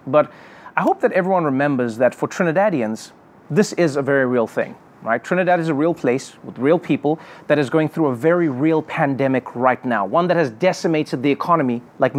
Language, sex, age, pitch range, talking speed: English, male, 30-49, 150-195 Hz, 200 wpm